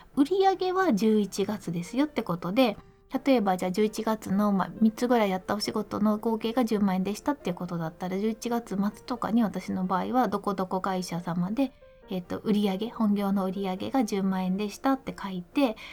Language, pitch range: Japanese, 185-250 Hz